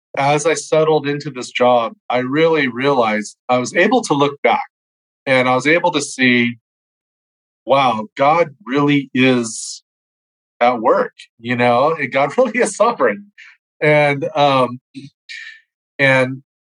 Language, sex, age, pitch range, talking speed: English, male, 30-49, 120-155 Hz, 135 wpm